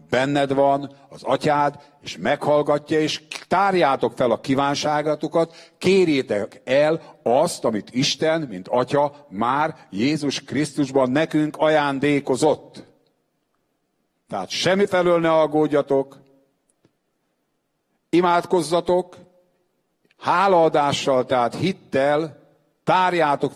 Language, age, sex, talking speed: English, 60-79, male, 80 wpm